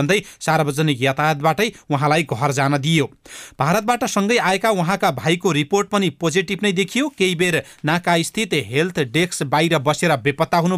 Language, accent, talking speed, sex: English, Indian, 145 wpm, male